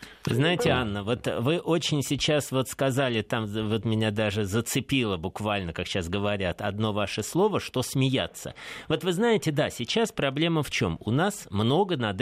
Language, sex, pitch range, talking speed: Russian, male, 105-160 Hz, 170 wpm